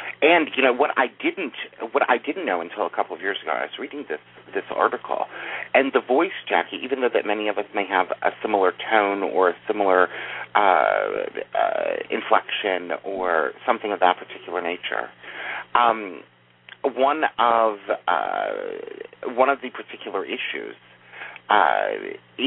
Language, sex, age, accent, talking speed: English, male, 40-59, American, 160 wpm